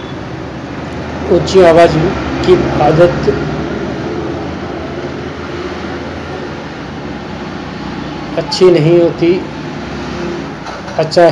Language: Hindi